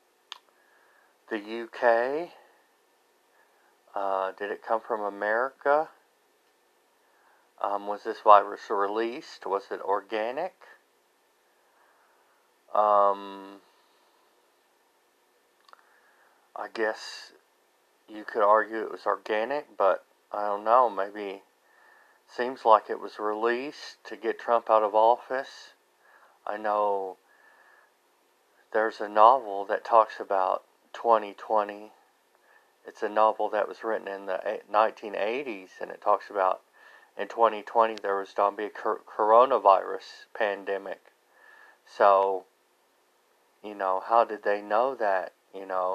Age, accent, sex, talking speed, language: 40-59, American, male, 110 wpm, English